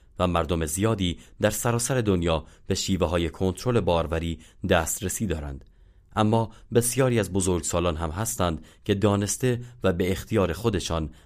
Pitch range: 80-105 Hz